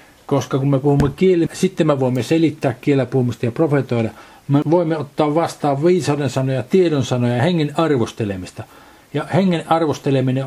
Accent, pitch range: native, 120-155 Hz